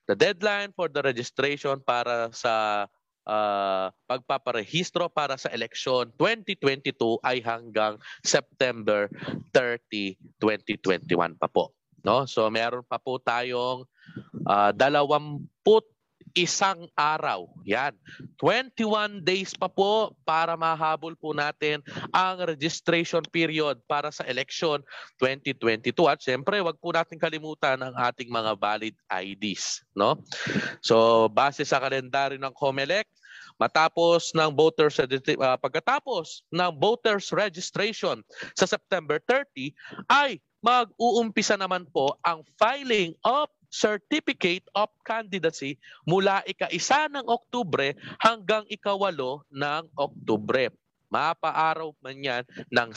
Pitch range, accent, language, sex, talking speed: 130-190 Hz, native, Filipino, male, 110 wpm